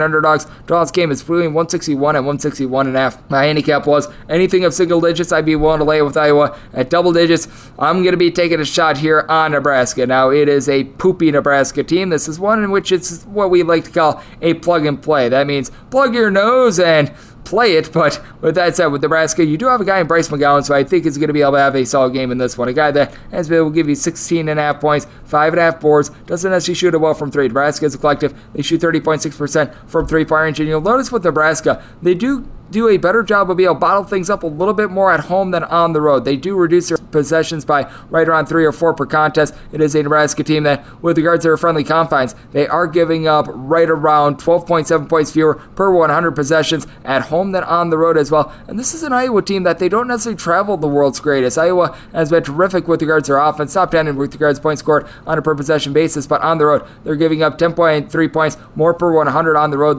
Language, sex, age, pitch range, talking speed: English, male, 20-39, 145-170 Hz, 260 wpm